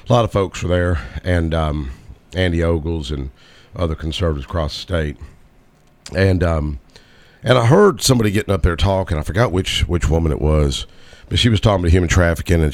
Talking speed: 195 wpm